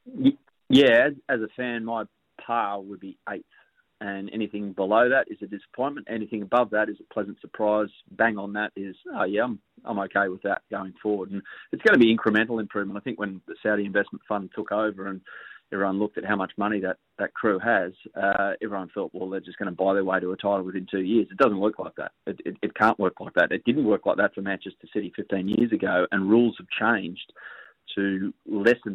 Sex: male